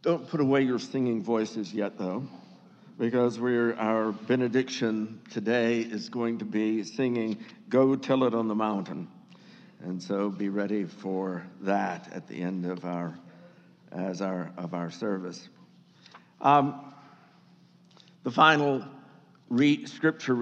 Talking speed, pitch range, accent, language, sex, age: 130 wpm, 110-140 Hz, American, English, male, 60-79